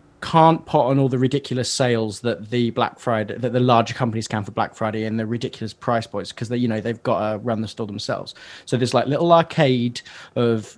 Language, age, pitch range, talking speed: English, 20-39, 110-135 Hz, 225 wpm